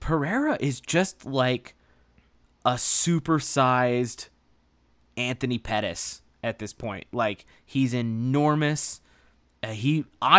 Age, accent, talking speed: 20-39, American, 90 wpm